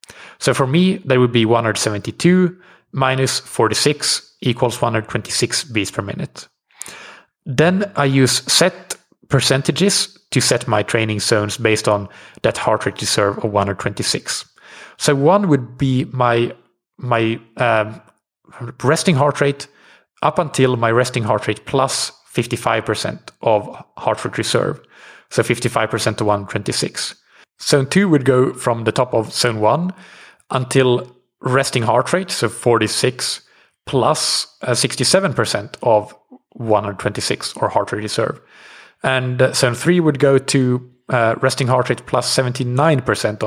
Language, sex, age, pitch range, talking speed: English, male, 30-49, 115-140 Hz, 130 wpm